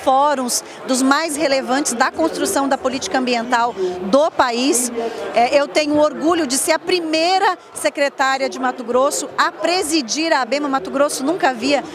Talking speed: 150 wpm